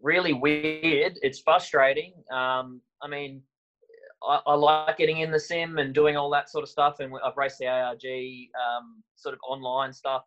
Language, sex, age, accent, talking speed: English, male, 20-39, Australian, 180 wpm